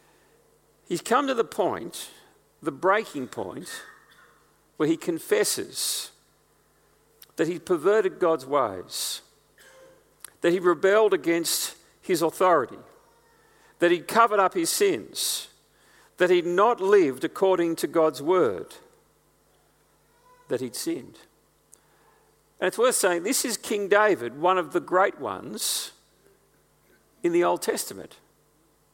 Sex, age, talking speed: male, 50-69, 115 wpm